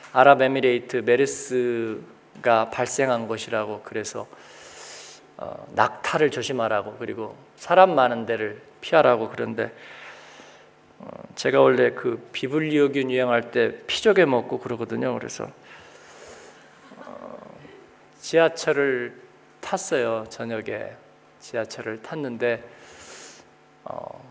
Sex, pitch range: male, 125-170 Hz